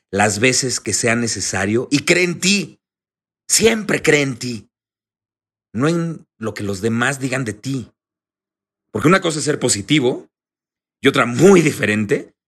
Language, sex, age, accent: Spanish, male, 40-59, Mexican